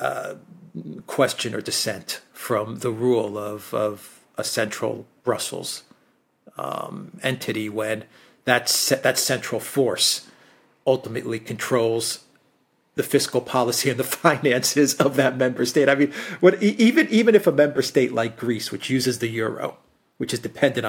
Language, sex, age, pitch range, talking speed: English, male, 40-59, 115-145 Hz, 145 wpm